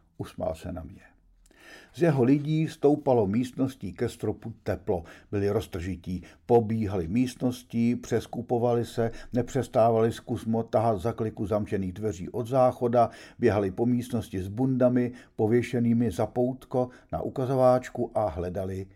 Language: Czech